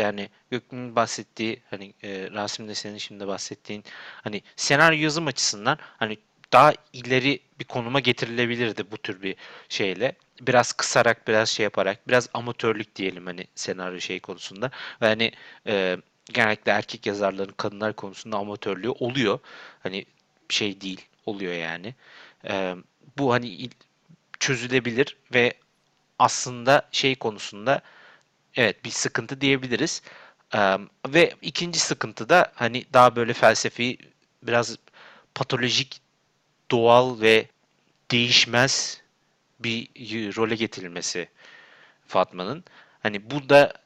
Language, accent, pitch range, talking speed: Turkish, native, 105-130 Hz, 115 wpm